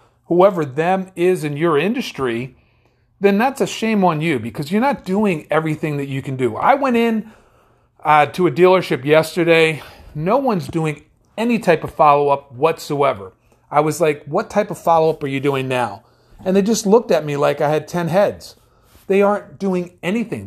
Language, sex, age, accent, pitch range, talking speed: English, male, 40-59, American, 145-200 Hz, 185 wpm